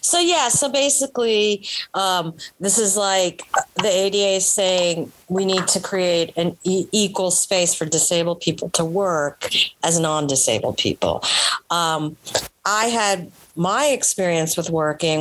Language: English